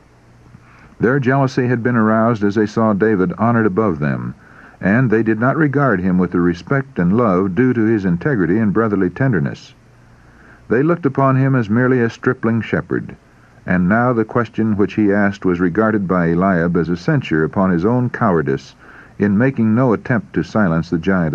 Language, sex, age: English, male, 60-79